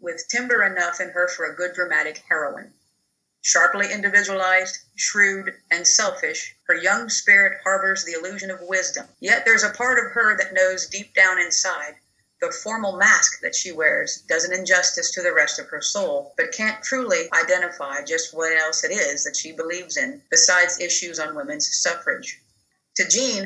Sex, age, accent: female, 50-69, American